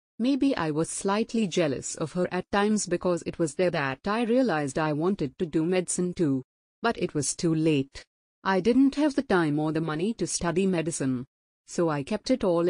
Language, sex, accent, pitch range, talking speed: English, female, Indian, 155-195 Hz, 205 wpm